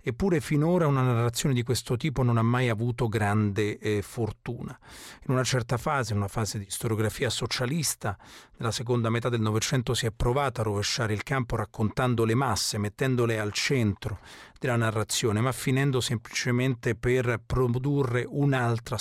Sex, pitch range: male, 110-130 Hz